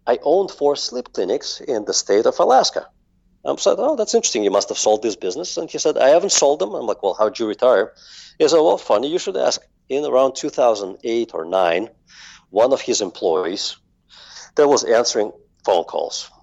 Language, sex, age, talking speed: English, male, 50-69, 205 wpm